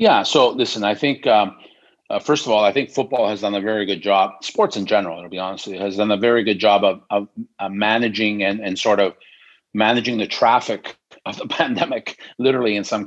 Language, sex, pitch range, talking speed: English, male, 100-115 Hz, 225 wpm